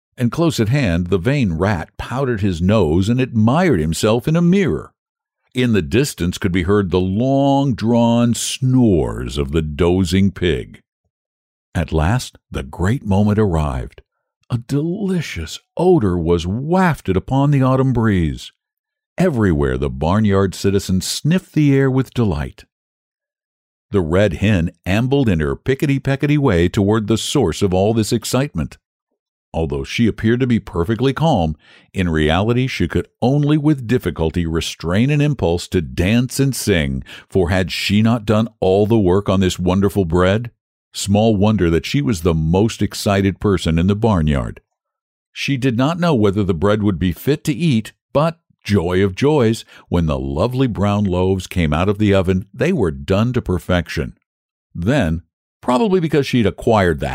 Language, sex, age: English, male, 60-79